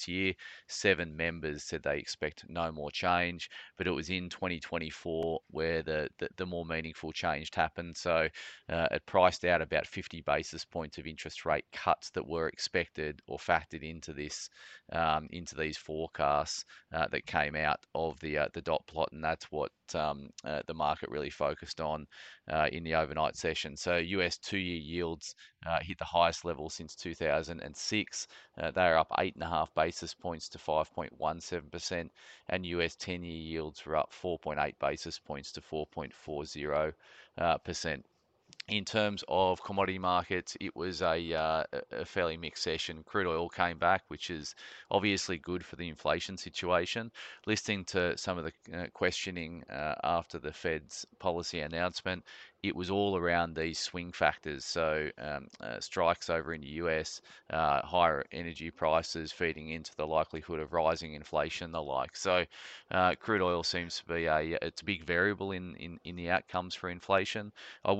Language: English